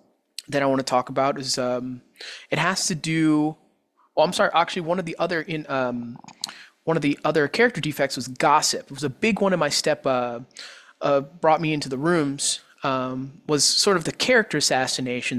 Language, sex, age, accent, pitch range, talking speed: English, male, 20-39, American, 135-170 Hz, 205 wpm